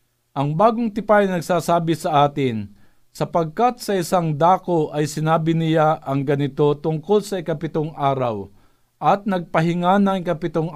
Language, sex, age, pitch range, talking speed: Filipino, male, 50-69, 140-180 Hz, 135 wpm